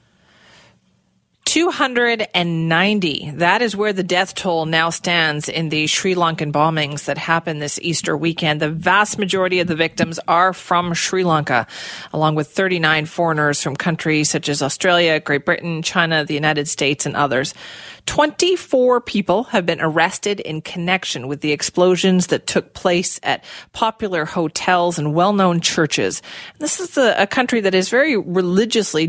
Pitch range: 155-200 Hz